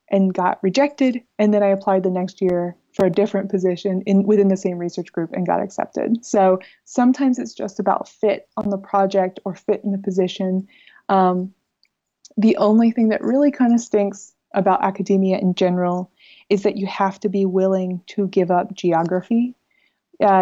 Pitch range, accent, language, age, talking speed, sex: 185-210 Hz, American, Turkish, 20-39, 180 wpm, female